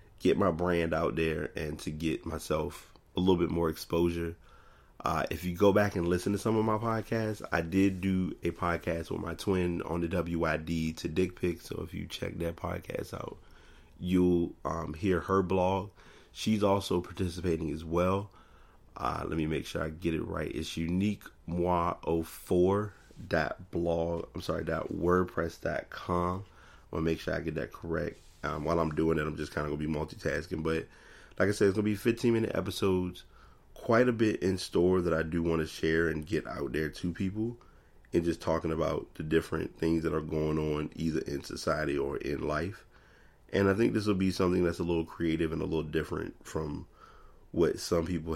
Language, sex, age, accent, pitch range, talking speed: English, male, 30-49, American, 80-95 Hz, 195 wpm